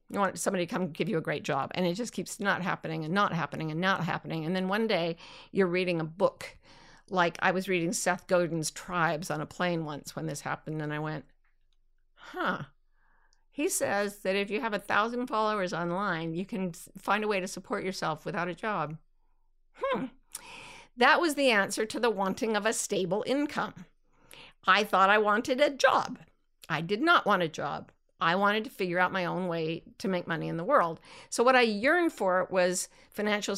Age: 50-69